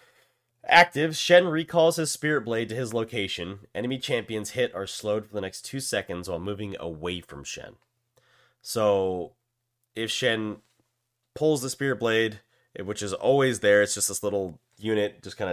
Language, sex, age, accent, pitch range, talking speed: English, male, 30-49, American, 100-125 Hz, 160 wpm